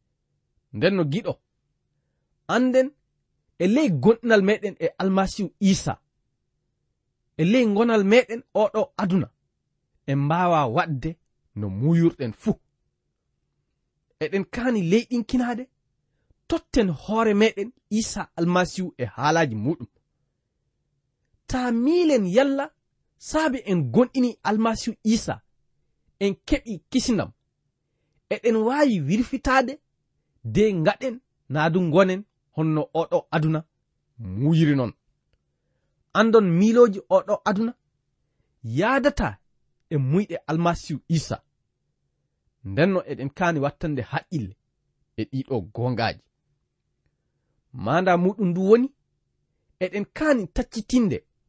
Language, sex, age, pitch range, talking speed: English, male, 30-49, 140-225 Hz, 85 wpm